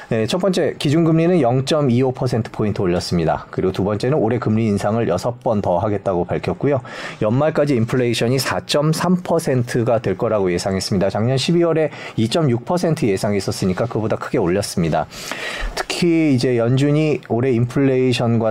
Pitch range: 110-135 Hz